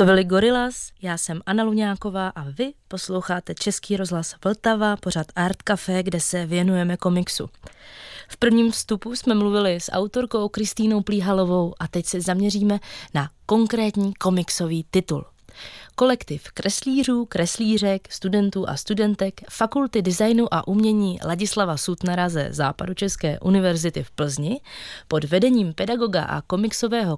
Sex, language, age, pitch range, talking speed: female, Czech, 20-39, 170-215 Hz, 130 wpm